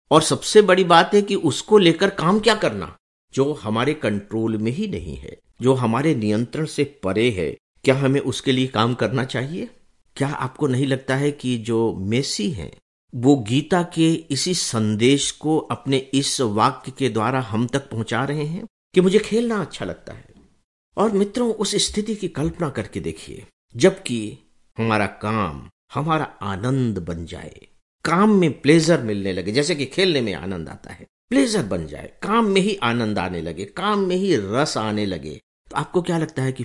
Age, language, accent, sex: 50-69, English, Indian, male